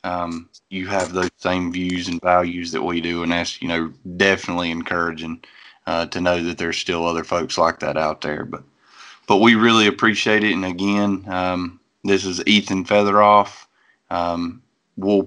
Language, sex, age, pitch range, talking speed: English, male, 20-39, 90-100 Hz, 175 wpm